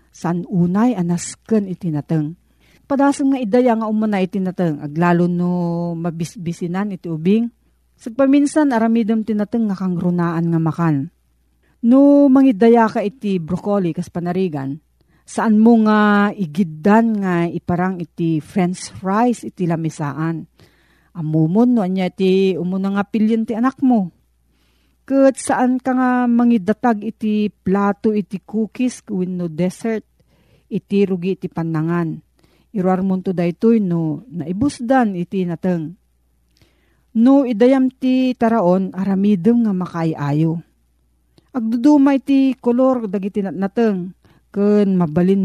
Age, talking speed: 40-59, 110 wpm